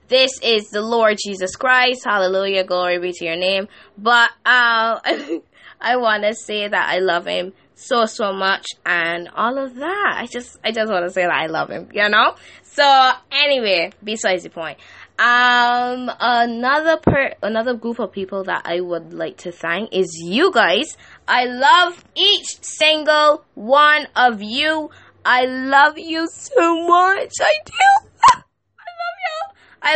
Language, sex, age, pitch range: Chinese, female, 10-29, 180-255 Hz